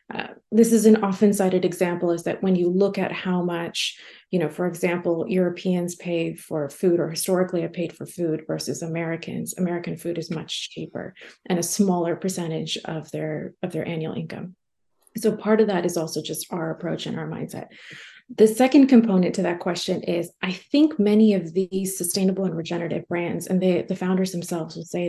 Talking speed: 190 wpm